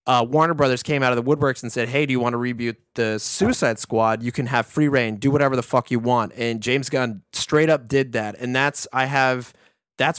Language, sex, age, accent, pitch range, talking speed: English, male, 20-39, American, 115-145 Hz, 245 wpm